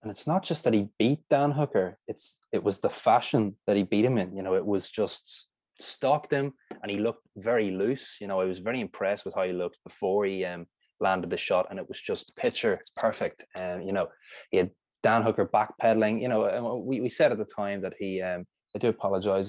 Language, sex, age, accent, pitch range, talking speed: English, male, 20-39, Irish, 95-125 Hz, 230 wpm